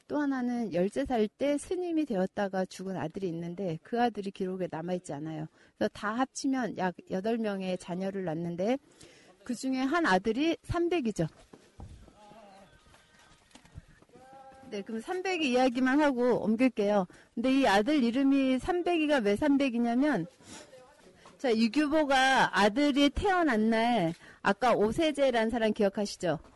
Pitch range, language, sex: 200-285 Hz, Korean, female